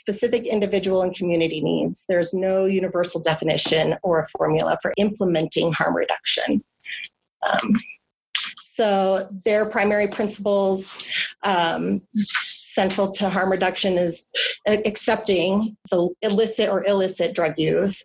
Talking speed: 115 wpm